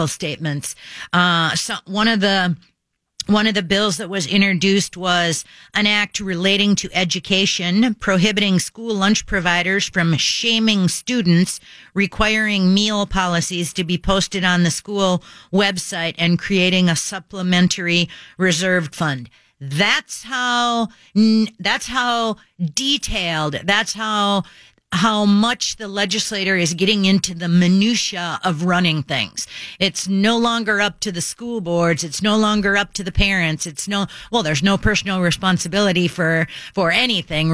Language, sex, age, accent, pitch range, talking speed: English, female, 40-59, American, 175-210 Hz, 135 wpm